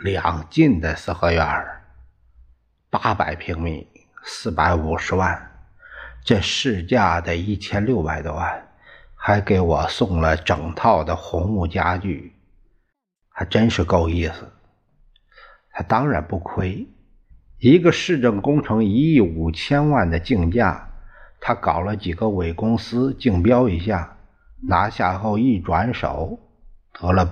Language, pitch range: Chinese, 80-110 Hz